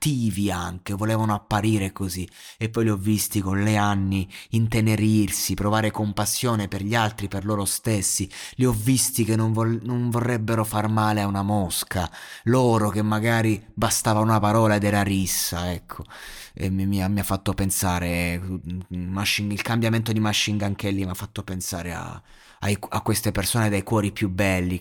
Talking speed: 175 wpm